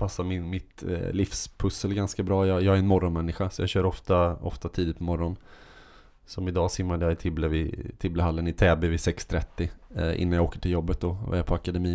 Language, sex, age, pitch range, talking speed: Swedish, male, 20-39, 90-100 Hz, 205 wpm